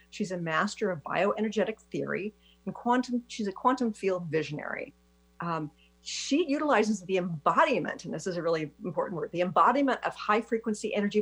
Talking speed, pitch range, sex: 165 wpm, 155-230 Hz, female